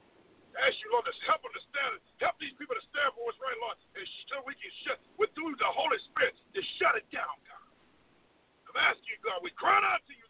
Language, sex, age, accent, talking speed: English, male, 50-69, American, 250 wpm